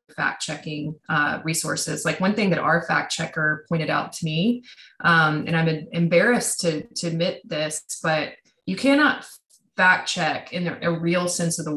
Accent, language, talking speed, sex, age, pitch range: American, English, 175 wpm, female, 20-39, 155-175 Hz